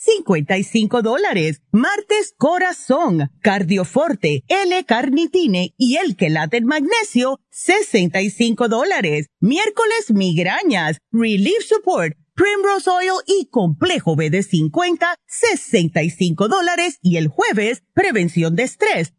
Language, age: Spanish, 40-59